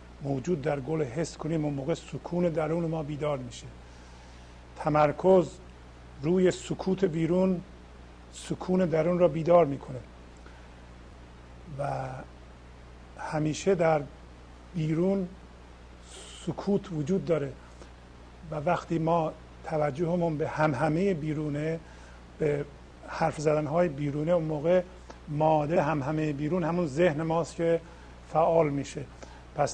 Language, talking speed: Persian, 105 wpm